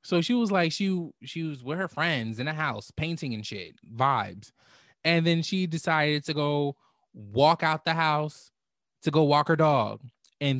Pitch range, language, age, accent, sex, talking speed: 135-180 Hz, English, 20-39, American, male, 185 wpm